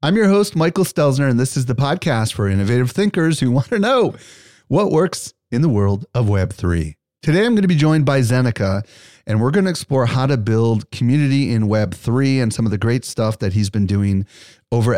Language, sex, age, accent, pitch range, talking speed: English, male, 40-59, American, 105-135 Hz, 215 wpm